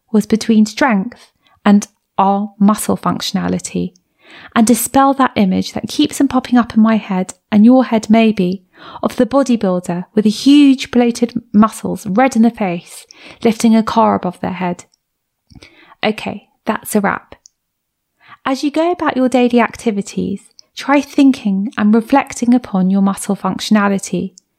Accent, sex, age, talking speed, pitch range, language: British, female, 30-49, 145 wpm, 195-260 Hz, English